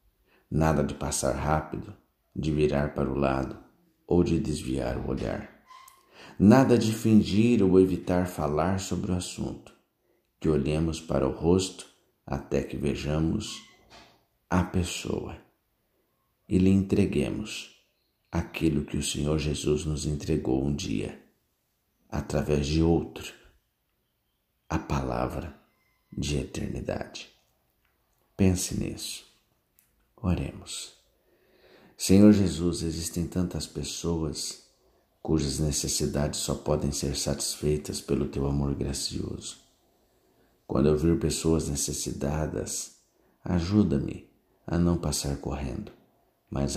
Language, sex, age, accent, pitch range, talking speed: Portuguese, male, 50-69, Brazilian, 70-90 Hz, 105 wpm